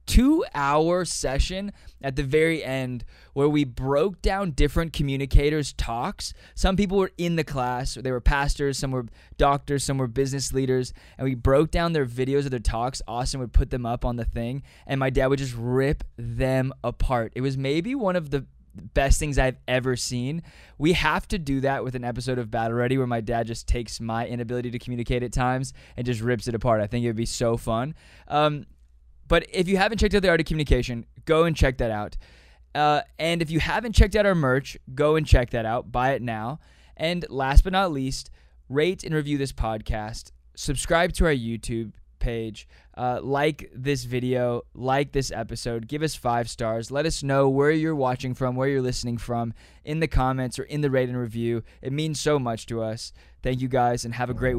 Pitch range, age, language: 120-145 Hz, 20-39, English